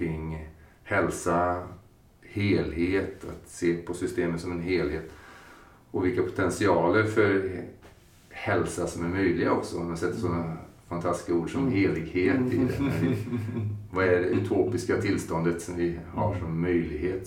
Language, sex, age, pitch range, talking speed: Swedish, male, 30-49, 85-95 Hz, 130 wpm